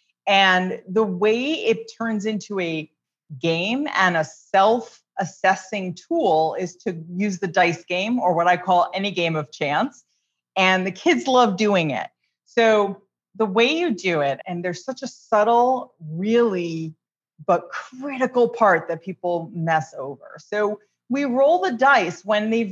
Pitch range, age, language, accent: 175-245 Hz, 30-49, English, American